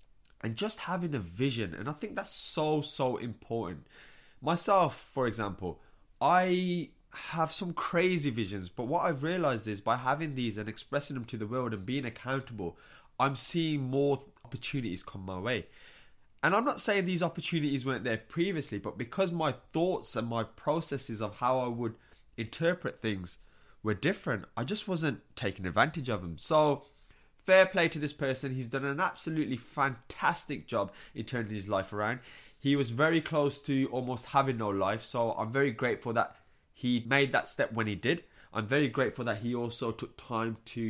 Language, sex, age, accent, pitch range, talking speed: English, male, 20-39, British, 110-150 Hz, 180 wpm